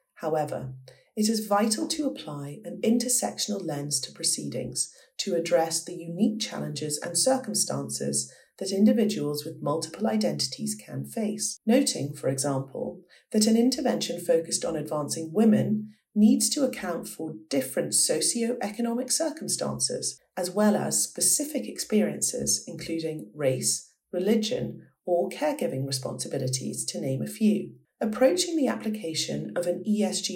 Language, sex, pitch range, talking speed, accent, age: English, female, 150-225 Hz, 125 wpm, British, 40-59